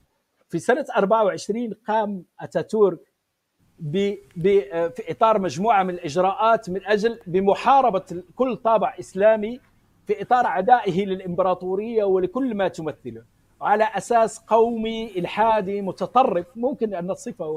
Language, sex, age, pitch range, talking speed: English, male, 50-69, 165-225 Hz, 105 wpm